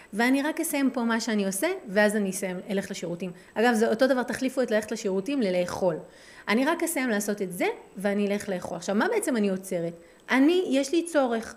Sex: female